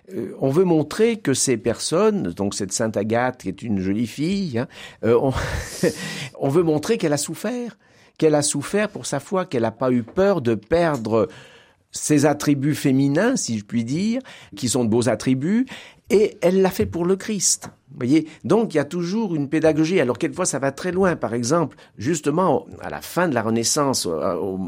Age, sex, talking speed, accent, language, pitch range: 50-69, male, 195 wpm, French, French, 115-175 Hz